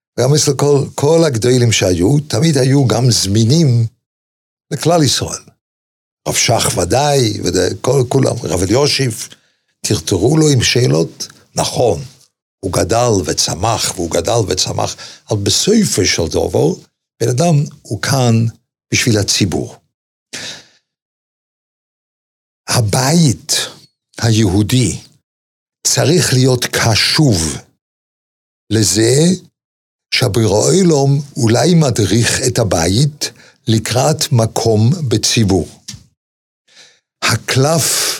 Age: 60-79